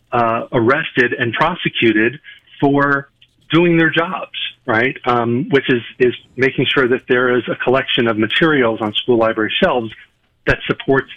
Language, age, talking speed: English, 40-59, 150 wpm